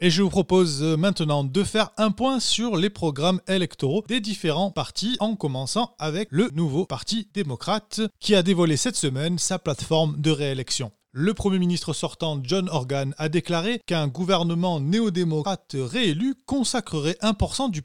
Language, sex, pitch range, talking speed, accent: French, male, 145-205 Hz, 160 wpm, French